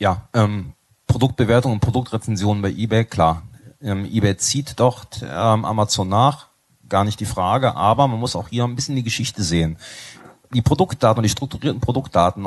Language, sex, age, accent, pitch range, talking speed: German, male, 30-49, German, 105-130 Hz, 165 wpm